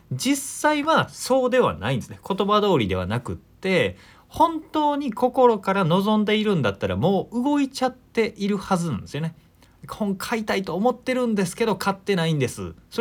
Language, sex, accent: Japanese, male, native